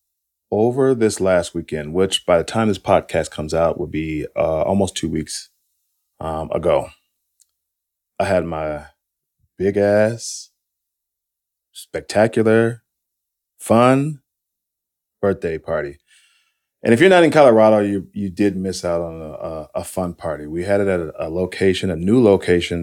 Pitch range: 80-100 Hz